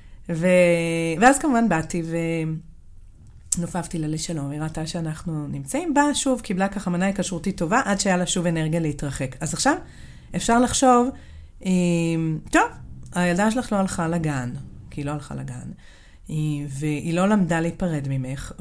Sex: female